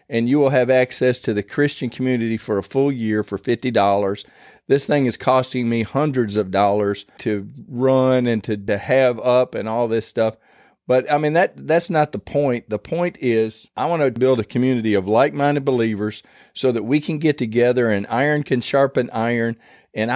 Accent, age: American, 40-59